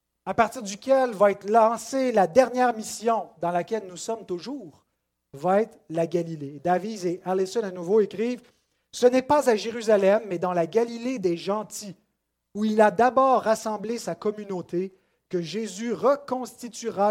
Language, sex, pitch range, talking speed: French, male, 180-230 Hz, 160 wpm